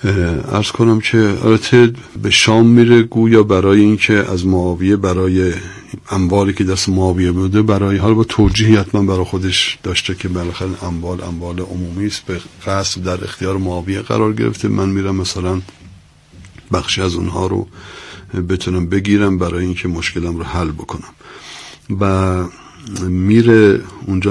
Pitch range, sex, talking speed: 90-100 Hz, male, 135 wpm